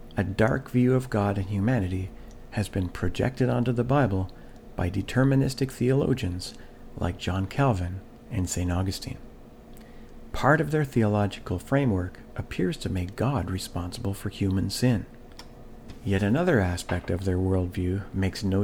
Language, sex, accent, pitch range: English, male, American, 95-125 Hz